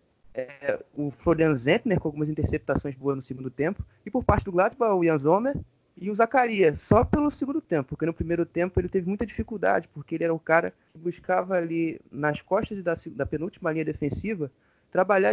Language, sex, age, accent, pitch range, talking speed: Portuguese, male, 20-39, Brazilian, 140-185 Hz, 190 wpm